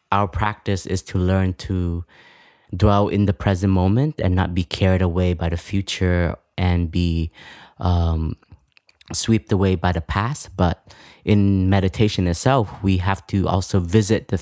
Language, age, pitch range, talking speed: English, 20-39, 90-100 Hz, 155 wpm